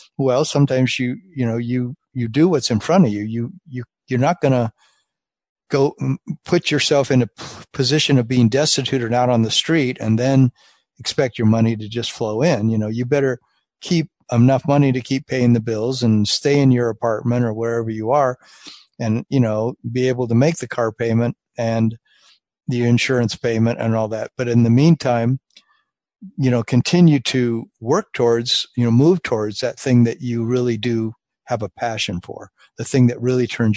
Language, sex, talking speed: English, male, 195 wpm